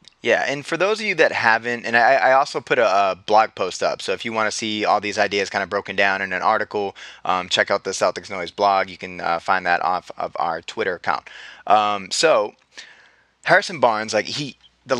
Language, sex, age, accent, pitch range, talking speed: English, male, 20-39, American, 95-115 Hz, 230 wpm